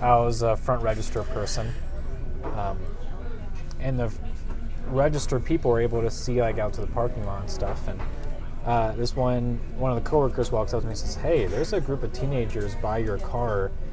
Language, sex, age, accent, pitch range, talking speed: English, male, 20-39, American, 100-125 Hz, 205 wpm